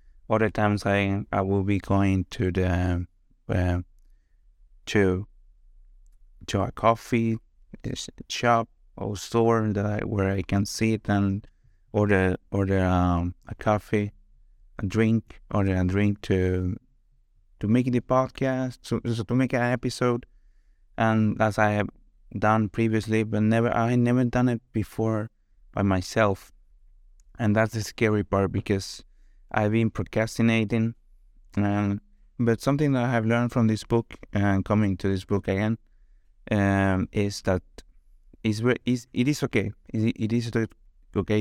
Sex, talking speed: male, 140 wpm